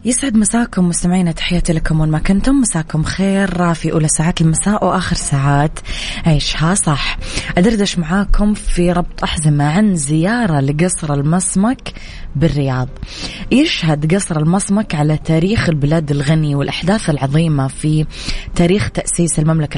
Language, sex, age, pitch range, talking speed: English, female, 20-39, 155-185 Hz, 125 wpm